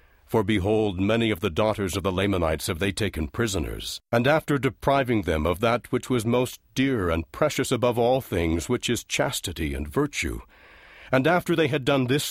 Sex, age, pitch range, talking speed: male, 60-79, 100-140 Hz, 190 wpm